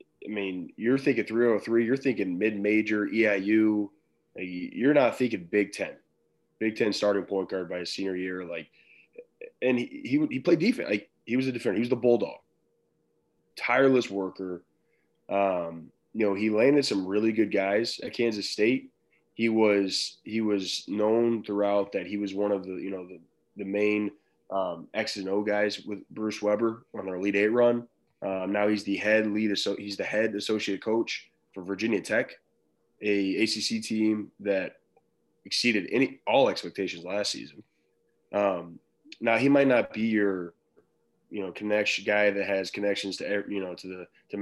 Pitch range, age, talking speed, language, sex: 95-110 Hz, 20-39, 175 wpm, English, male